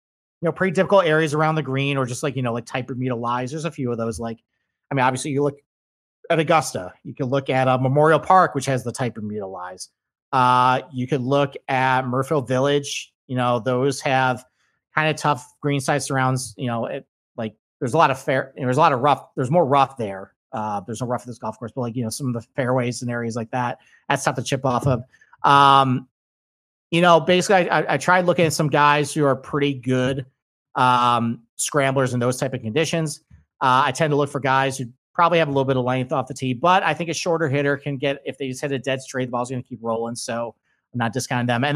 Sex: male